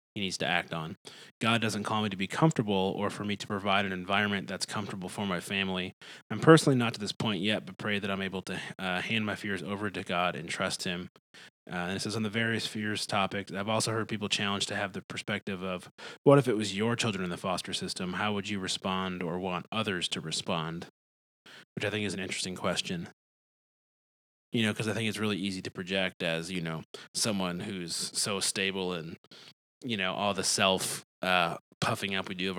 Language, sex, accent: English, male, American